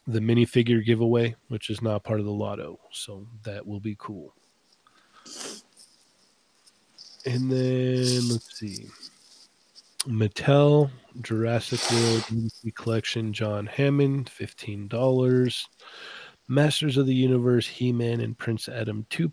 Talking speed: 115 wpm